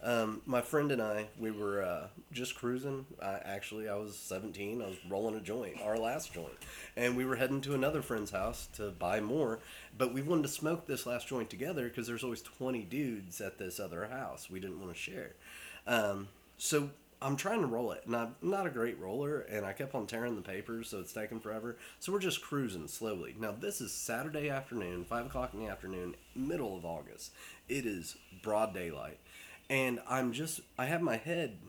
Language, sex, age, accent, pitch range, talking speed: English, male, 30-49, American, 105-140 Hz, 210 wpm